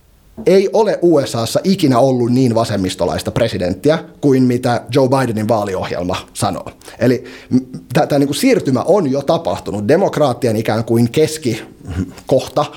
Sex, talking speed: male, 120 wpm